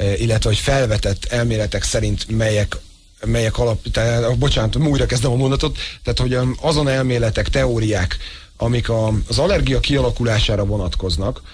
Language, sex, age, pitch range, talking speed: Hungarian, male, 30-49, 110-140 Hz, 125 wpm